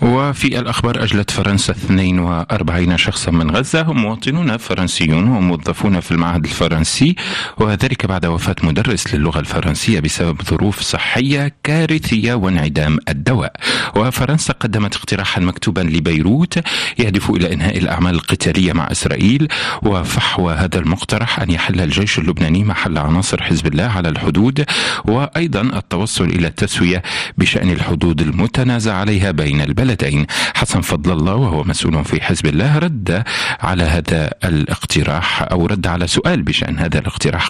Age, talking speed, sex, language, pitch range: 40-59, 130 wpm, male, Arabic, 85-120 Hz